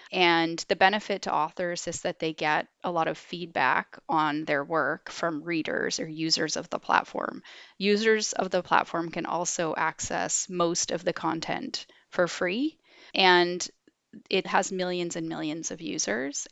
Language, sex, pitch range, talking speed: English, female, 160-195 Hz, 160 wpm